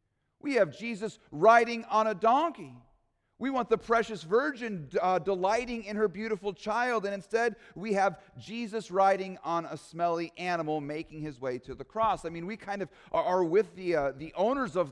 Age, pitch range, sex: 40-59, 165-225 Hz, male